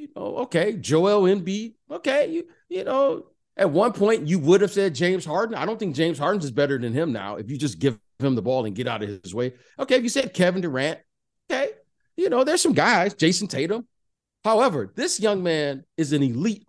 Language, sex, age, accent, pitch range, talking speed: English, male, 50-69, American, 125-190 Hz, 225 wpm